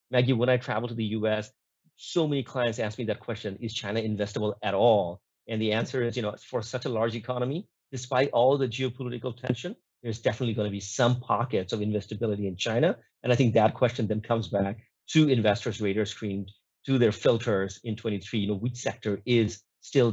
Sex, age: male, 40-59